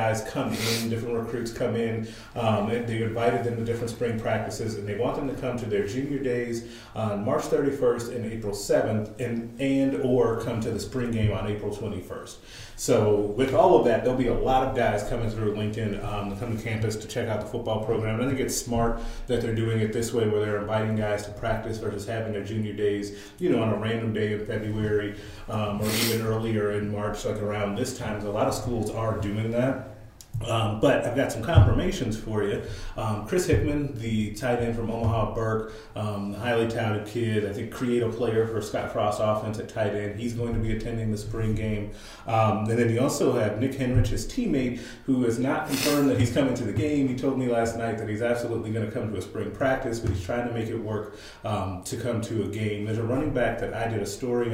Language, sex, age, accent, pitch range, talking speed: English, male, 30-49, American, 105-120 Hz, 230 wpm